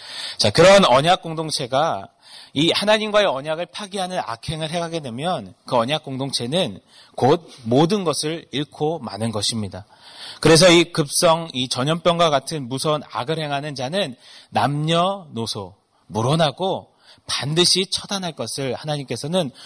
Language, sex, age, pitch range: Korean, male, 30-49, 115-160 Hz